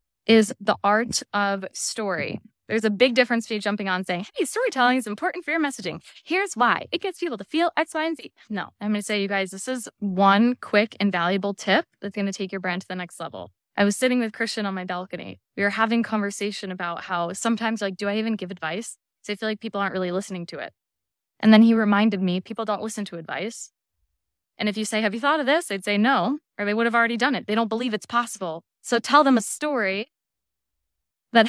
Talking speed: 240 wpm